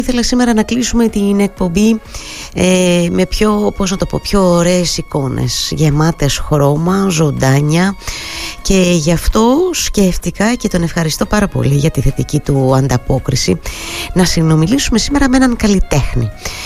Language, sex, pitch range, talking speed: Greek, female, 135-200 Hz, 140 wpm